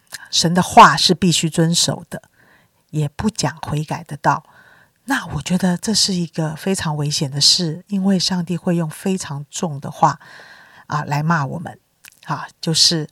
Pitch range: 150-180 Hz